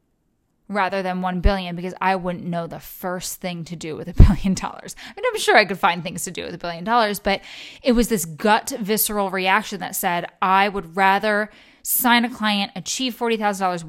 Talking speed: 205 wpm